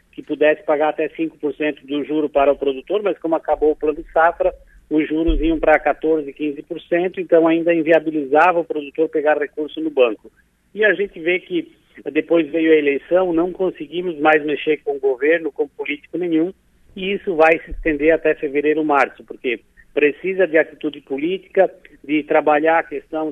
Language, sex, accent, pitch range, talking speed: Portuguese, male, Brazilian, 150-180 Hz, 175 wpm